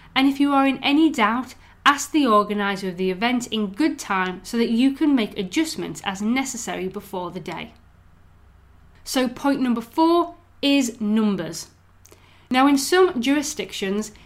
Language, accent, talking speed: English, British, 155 wpm